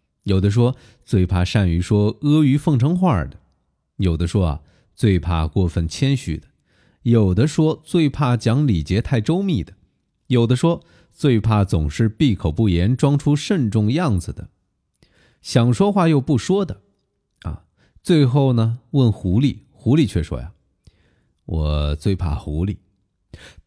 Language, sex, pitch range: Chinese, male, 85-130 Hz